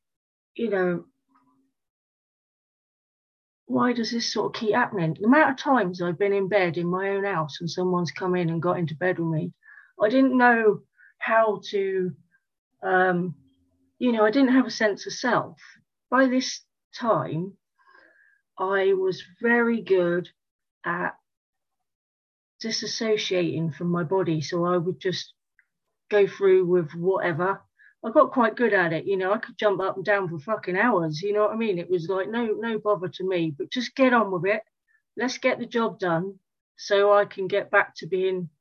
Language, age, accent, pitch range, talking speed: English, 40-59, British, 175-230 Hz, 175 wpm